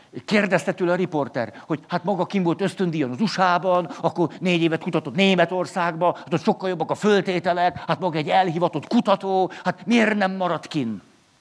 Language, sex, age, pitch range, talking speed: Hungarian, male, 50-69, 150-195 Hz, 175 wpm